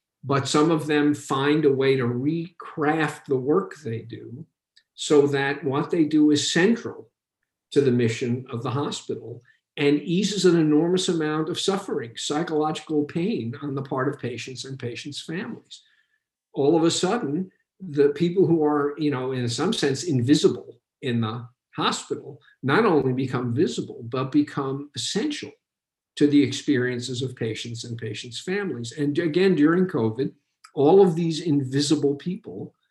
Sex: male